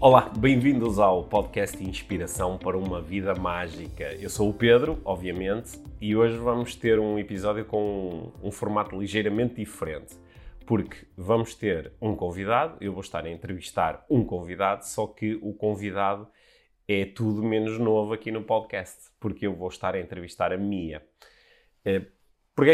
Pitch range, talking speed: 95-110 Hz, 155 wpm